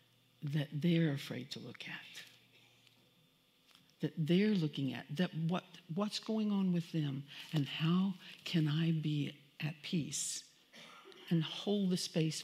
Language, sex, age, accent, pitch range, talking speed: English, female, 60-79, American, 150-190 Hz, 135 wpm